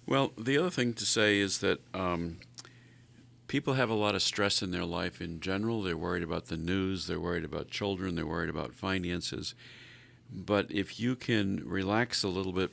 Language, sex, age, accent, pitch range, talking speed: English, male, 50-69, American, 90-120 Hz, 195 wpm